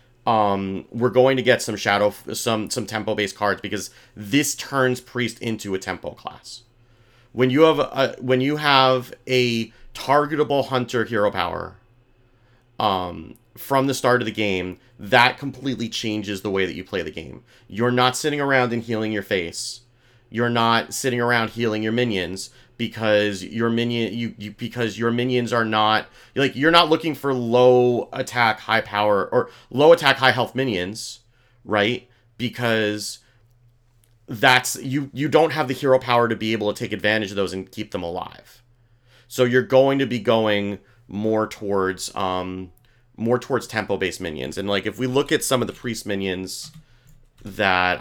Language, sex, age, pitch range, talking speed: English, male, 30-49, 105-125 Hz, 170 wpm